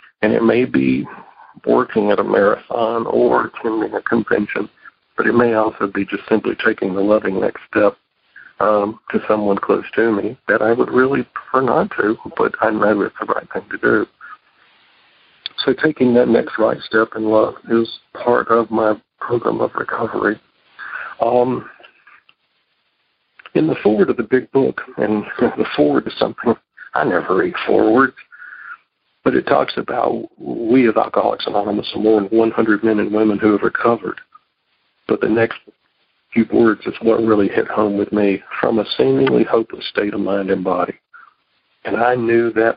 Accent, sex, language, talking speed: American, male, English, 170 wpm